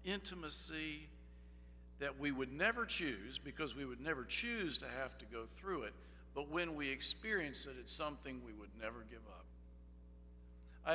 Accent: American